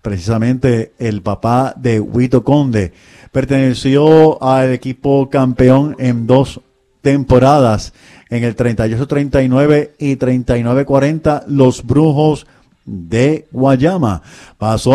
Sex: male